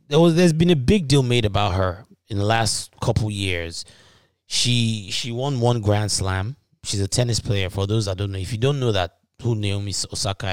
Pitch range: 95-120 Hz